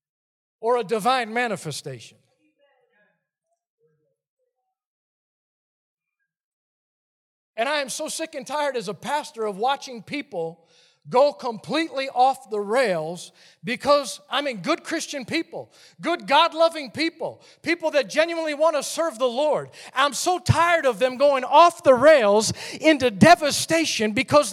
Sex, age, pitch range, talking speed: male, 40-59, 180-295 Hz, 125 wpm